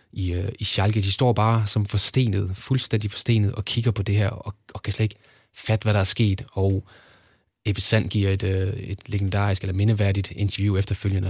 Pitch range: 95-110 Hz